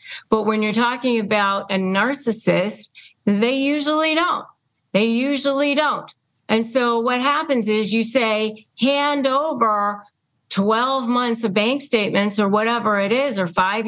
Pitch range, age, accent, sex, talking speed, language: 225-270 Hz, 40-59, American, female, 145 wpm, English